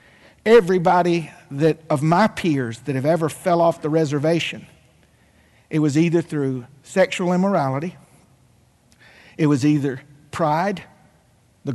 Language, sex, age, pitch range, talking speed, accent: English, male, 50-69, 140-180 Hz, 115 wpm, American